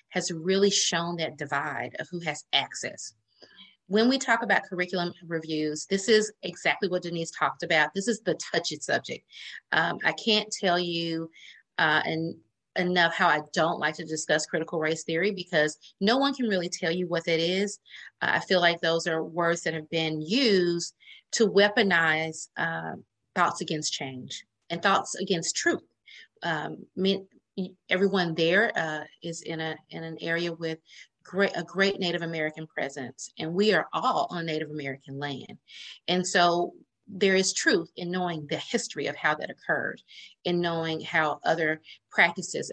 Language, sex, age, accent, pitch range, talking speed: English, female, 30-49, American, 160-195 Hz, 165 wpm